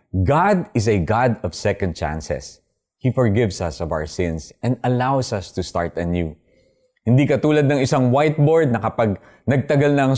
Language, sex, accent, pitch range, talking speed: Filipino, male, native, 105-145 Hz, 170 wpm